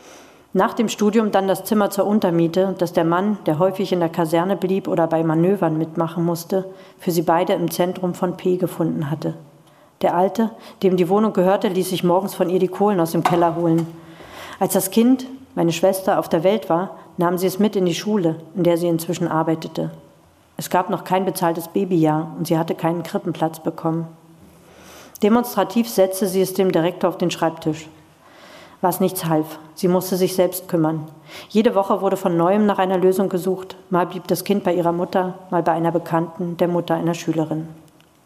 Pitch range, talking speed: 165-190 Hz, 190 wpm